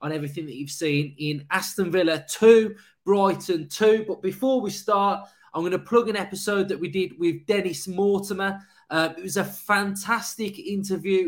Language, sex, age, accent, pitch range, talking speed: English, male, 20-39, British, 165-200 Hz, 175 wpm